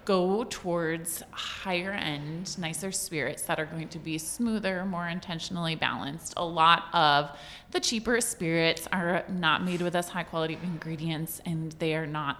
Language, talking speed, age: English, 165 wpm, 20-39